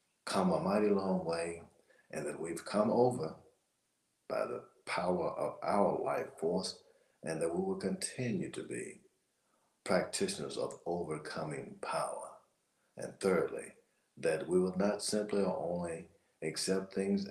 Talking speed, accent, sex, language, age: 135 wpm, American, male, English, 60-79